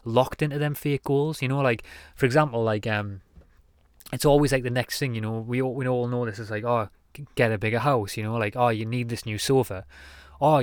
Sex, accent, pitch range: male, British, 110-130 Hz